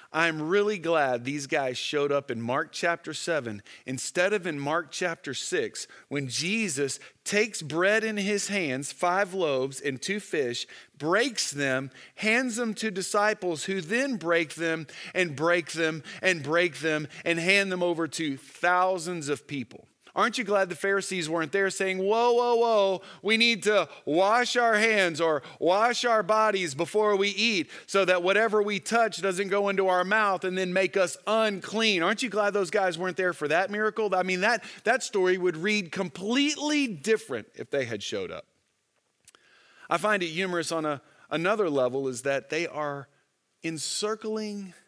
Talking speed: 175 wpm